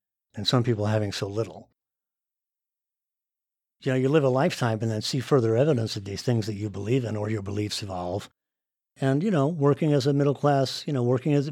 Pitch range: 110-140 Hz